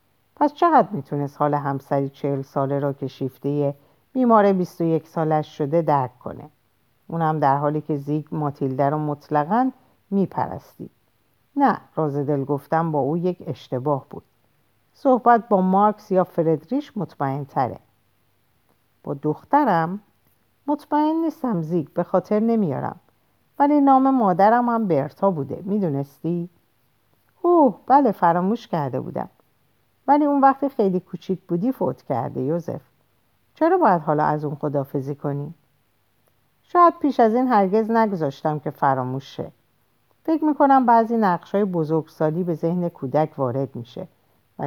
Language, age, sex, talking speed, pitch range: Persian, 50-69, female, 135 wpm, 145-215 Hz